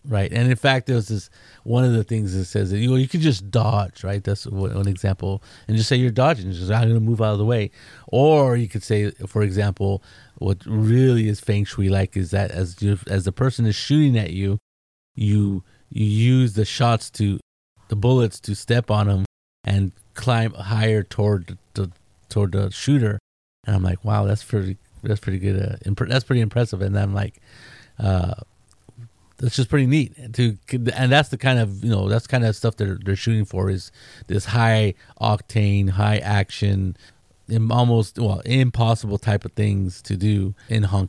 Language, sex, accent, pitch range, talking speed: English, male, American, 100-120 Hz, 195 wpm